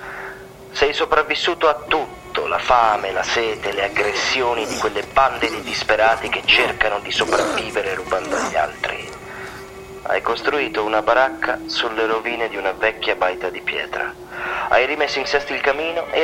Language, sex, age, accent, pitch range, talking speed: Italian, male, 30-49, native, 115-150 Hz, 150 wpm